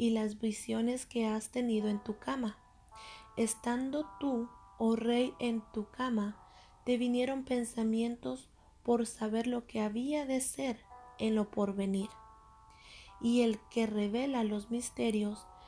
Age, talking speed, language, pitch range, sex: 30-49, 135 wpm, Spanish, 210-245 Hz, female